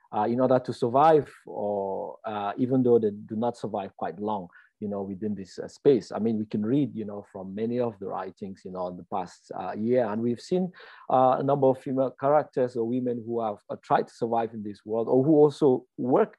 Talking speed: 235 wpm